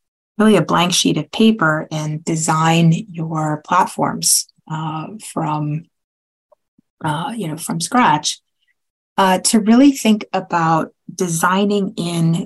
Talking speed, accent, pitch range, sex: 115 wpm, American, 160-215 Hz, female